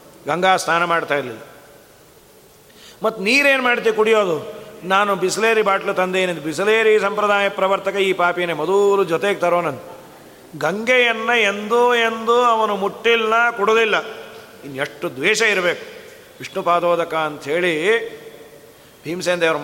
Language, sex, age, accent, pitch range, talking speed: Kannada, male, 40-59, native, 180-225 Hz, 110 wpm